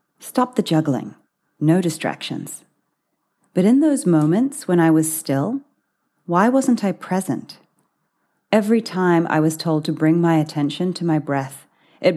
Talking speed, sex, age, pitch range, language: 150 wpm, female, 30-49, 150-180 Hz, English